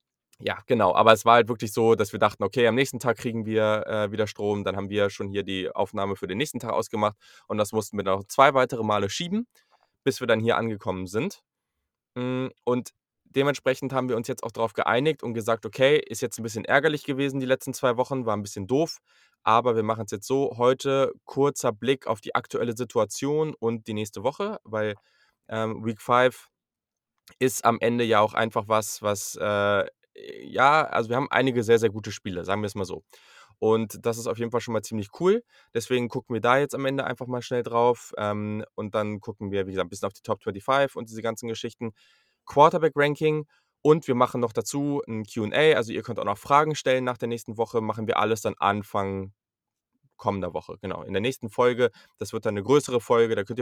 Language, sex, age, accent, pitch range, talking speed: German, male, 20-39, German, 105-130 Hz, 220 wpm